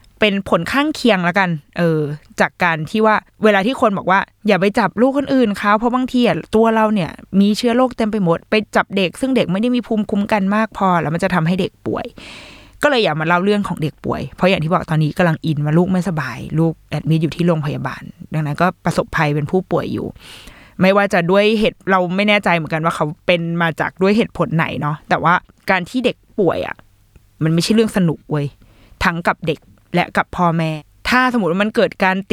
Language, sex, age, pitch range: Thai, female, 20-39, 165-215 Hz